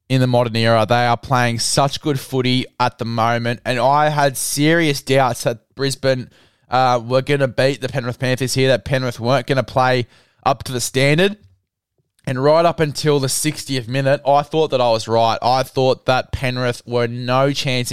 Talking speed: 195 wpm